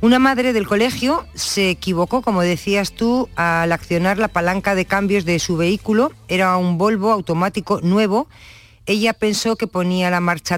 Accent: Spanish